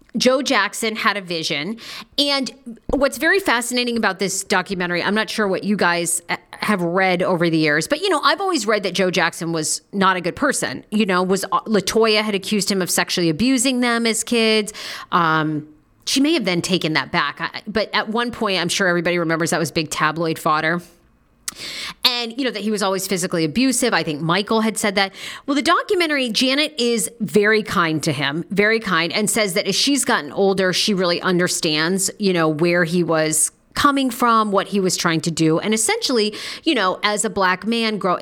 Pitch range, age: 175-225 Hz, 40-59